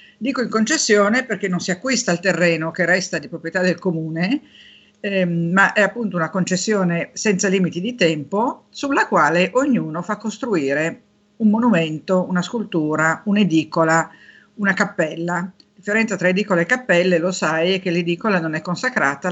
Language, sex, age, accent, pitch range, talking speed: Italian, female, 50-69, native, 165-210 Hz, 160 wpm